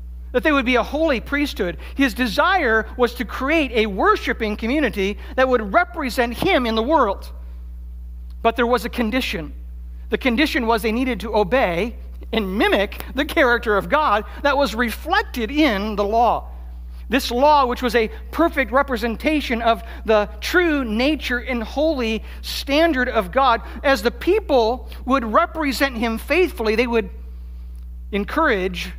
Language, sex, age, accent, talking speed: English, male, 60-79, American, 150 wpm